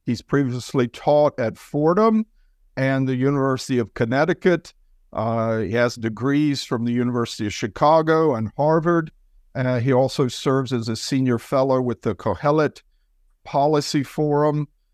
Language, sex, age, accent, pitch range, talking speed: English, male, 50-69, American, 115-135 Hz, 135 wpm